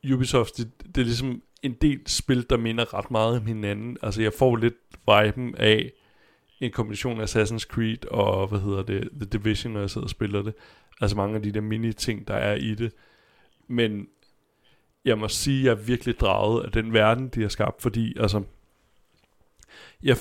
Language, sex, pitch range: Danish, male, 105-120 Hz